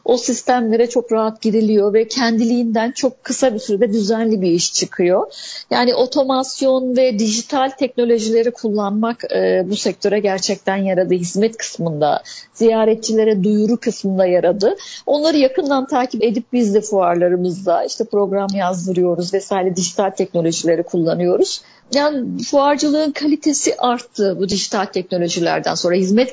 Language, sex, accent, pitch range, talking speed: Turkish, female, native, 190-265 Hz, 125 wpm